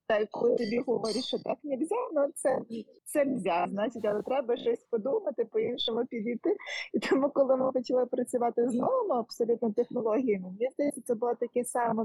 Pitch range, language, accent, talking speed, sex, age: 210-255 Hz, Ukrainian, native, 170 wpm, female, 20-39